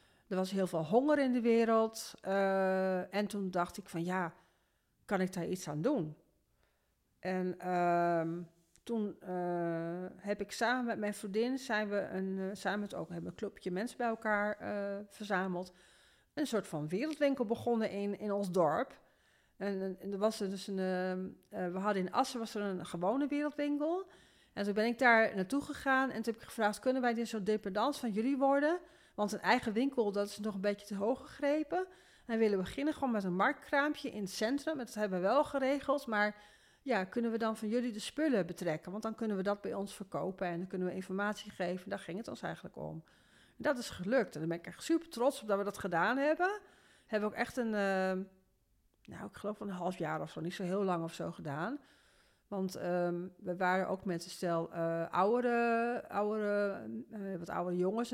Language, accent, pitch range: Dutch, Dutch, 185-235 Hz